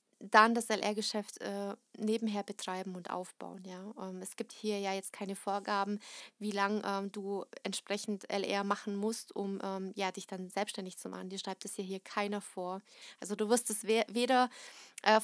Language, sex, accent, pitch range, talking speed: German, female, German, 200-230 Hz, 190 wpm